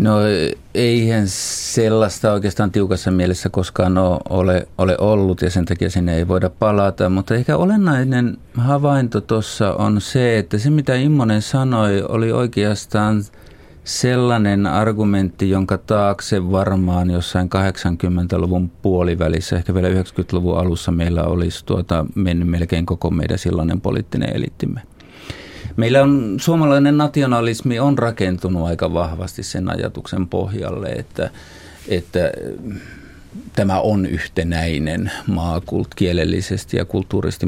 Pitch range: 90-105 Hz